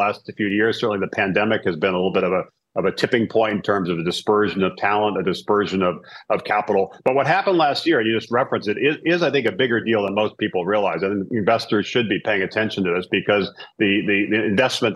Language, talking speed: English, 250 wpm